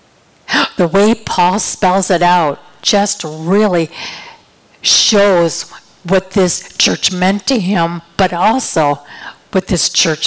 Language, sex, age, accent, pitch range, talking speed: English, female, 50-69, American, 165-200 Hz, 115 wpm